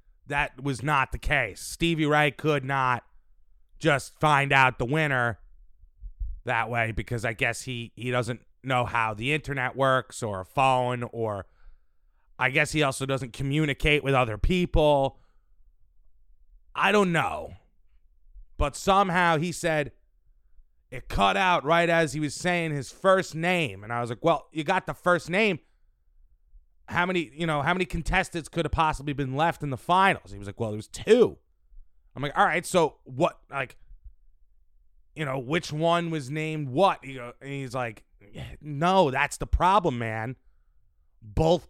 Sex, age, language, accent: male, 30-49, English, American